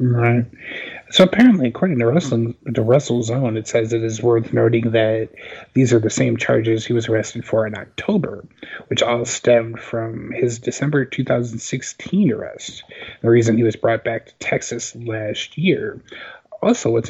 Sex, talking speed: male, 160 wpm